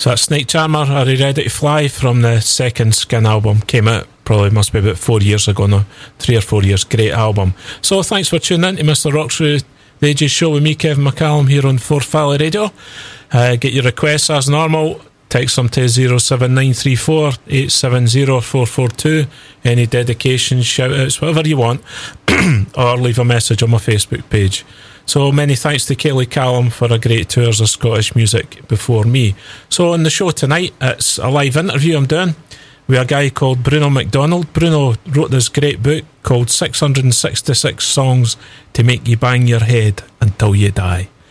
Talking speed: 180 wpm